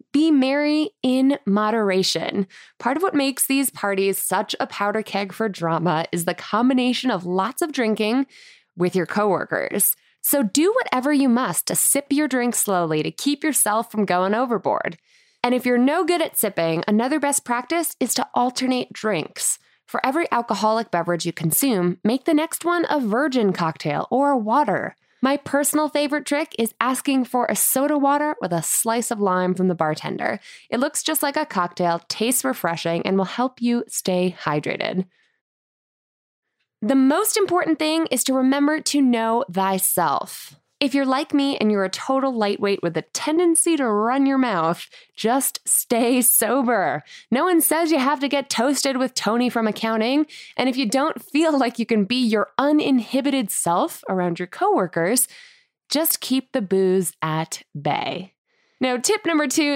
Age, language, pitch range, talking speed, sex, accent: 20-39, English, 205-290 Hz, 170 wpm, female, American